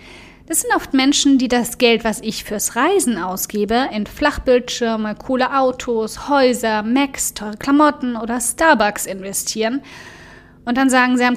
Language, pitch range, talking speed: German, 215-255 Hz, 150 wpm